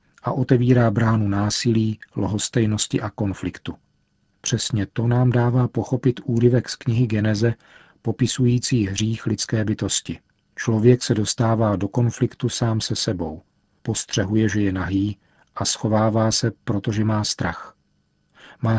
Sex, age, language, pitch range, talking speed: male, 40-59, Czech, 100-120 Hz, 125 wpm